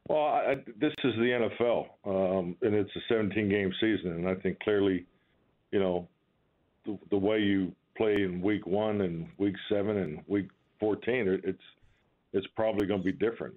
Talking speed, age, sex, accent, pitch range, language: 175 wpm, 50-69, male, American, 90-100 Hz, English